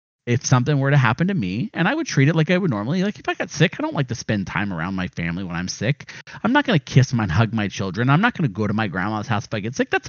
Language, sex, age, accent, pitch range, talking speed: English, male, 40-59, American, 120-165 Hz, 335 wpm